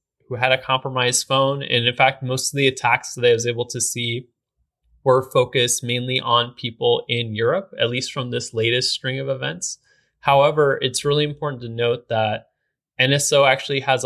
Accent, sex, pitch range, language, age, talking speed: American, male, 115-135 Hz, English, 20-39, 180 wpm